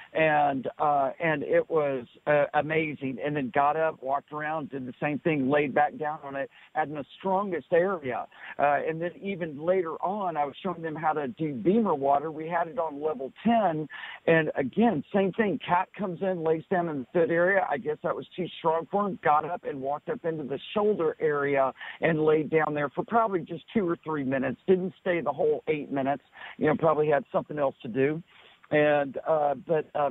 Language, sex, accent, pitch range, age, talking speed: English, male, American, 140-170 Hz, 50-69, 210 wpm